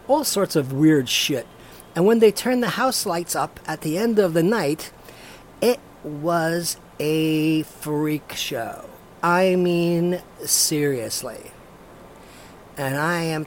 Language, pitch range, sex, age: English, 155-215 Hz, male, 50-69